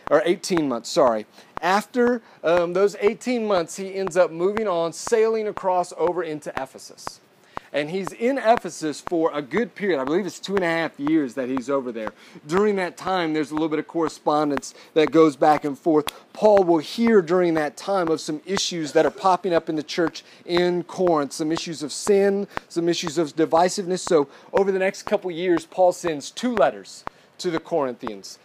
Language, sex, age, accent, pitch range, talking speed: English, male, 30-49, American, 150-190 Hz, 195 wpm